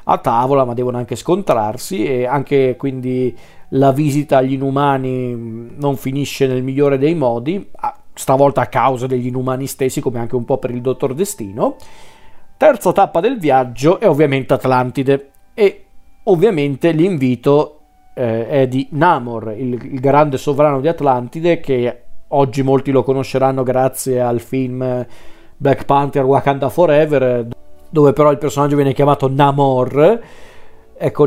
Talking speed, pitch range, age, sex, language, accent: 135 wpm, 125-145 Hz, 40-59, male, Italian, native